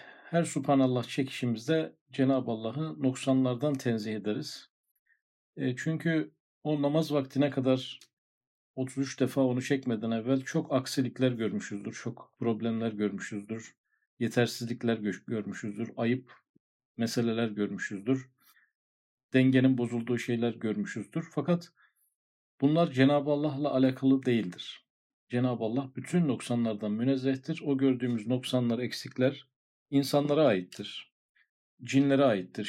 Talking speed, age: 95 wpm, 50-69